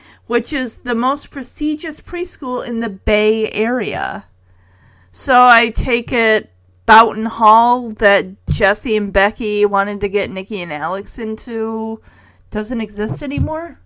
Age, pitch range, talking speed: 30-49, 195-270 Hz, 130 wpm